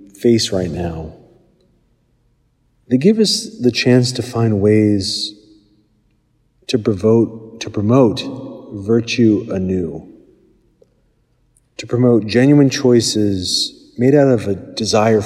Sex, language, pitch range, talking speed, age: male, English, 100-125 Hz, 95 wpm, 40-59